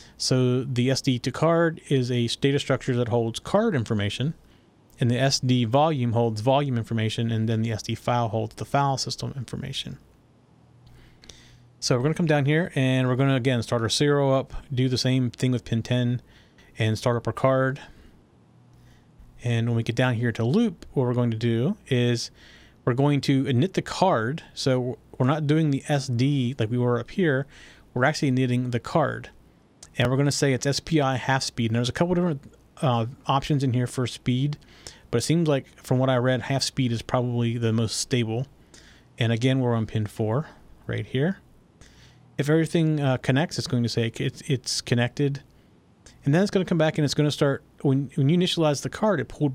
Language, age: English, 30-49